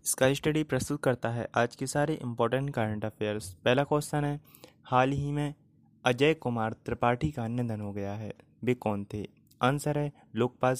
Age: 20-39